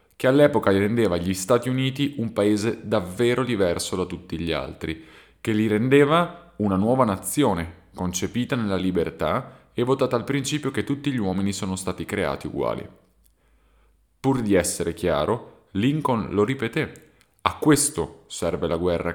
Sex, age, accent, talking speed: male, 30-49, native, 150 wpm